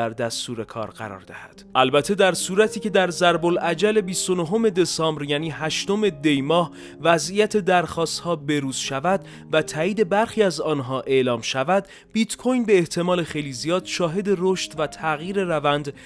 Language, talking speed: Persian, 145 wpm